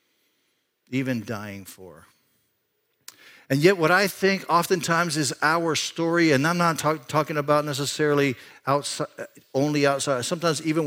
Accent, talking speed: American, 135 wpm